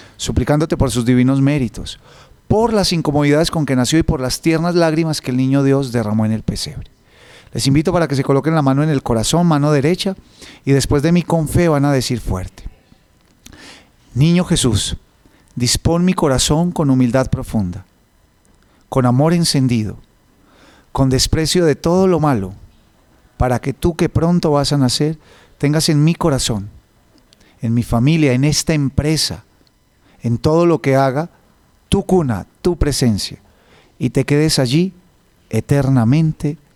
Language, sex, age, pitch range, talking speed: Spanish, male, 40-59, 120-160 Hz, 155 wpm